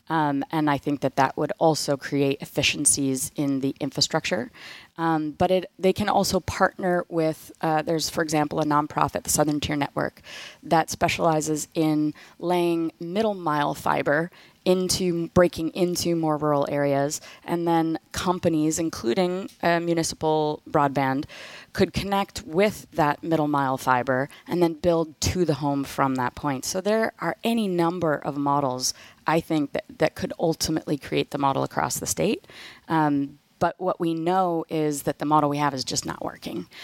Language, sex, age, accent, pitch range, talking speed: English, female, 30-49, American, 145-175 Hz, 160 wpm